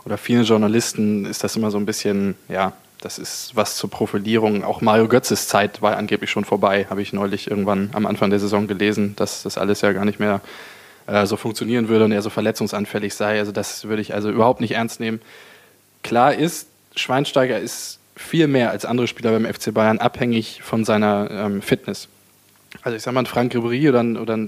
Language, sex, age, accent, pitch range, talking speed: German, male, 20-39, German, 105-120 Hz, 205 wpm